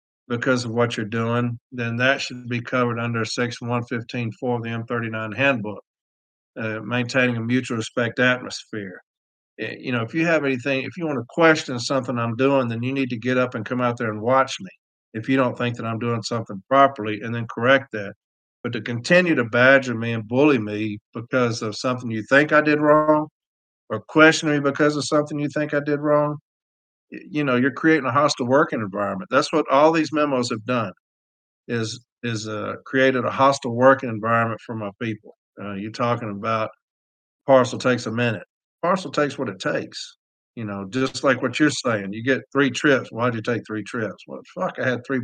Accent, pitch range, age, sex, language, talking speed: American, 115-135 Hz, 50-69, male, English, 200 wpm